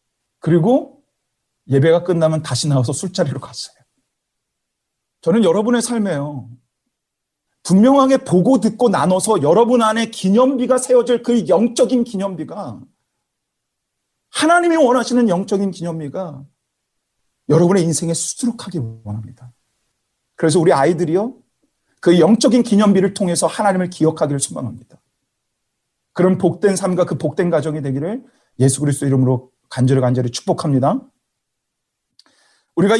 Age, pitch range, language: 40-59, 130-205 Hz, Korean